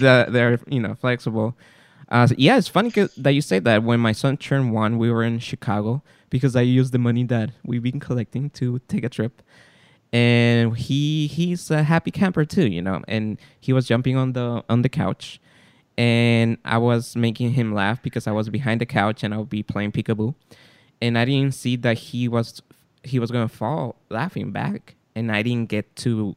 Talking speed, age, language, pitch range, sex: 200 wpm, 20-39, English, 110-130 Hz, male